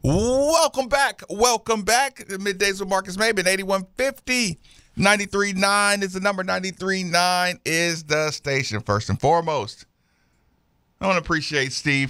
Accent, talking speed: American, 130 wpm